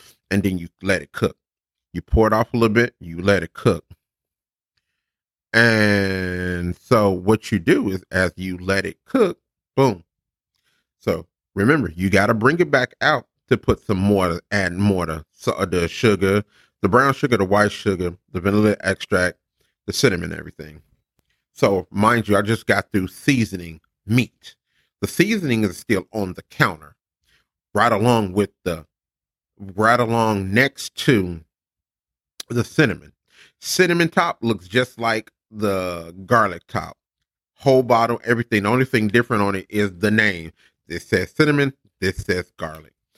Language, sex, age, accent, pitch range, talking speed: English, male, 30-49, American, 95-120 Hz, 155 wpm